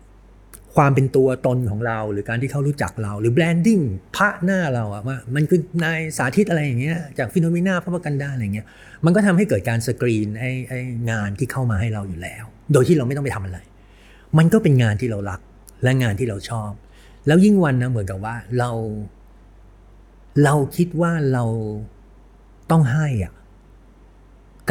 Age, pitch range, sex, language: 60-79, 105-145 Hz, male, Thai